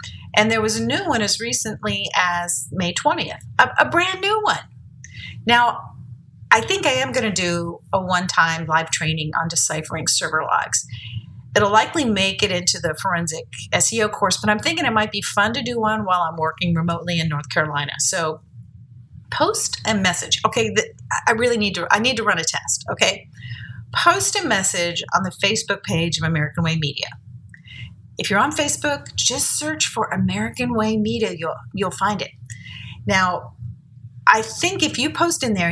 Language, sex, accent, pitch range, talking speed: English, female, American, 155-220 Hz, 180 wpm